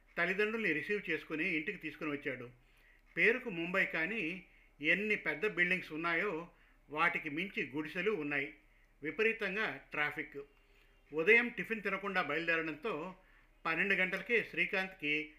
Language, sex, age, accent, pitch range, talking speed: Telugu, male, 50-69, native, 155-195 Hz, 100 wpm